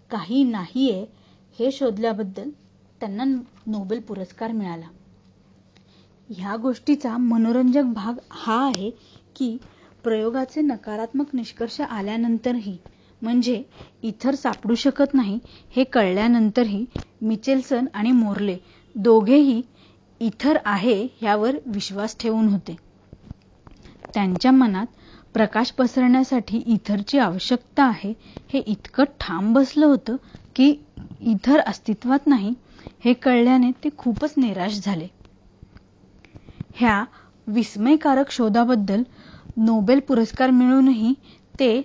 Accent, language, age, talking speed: native, Marathi, 30-49, 70 wpm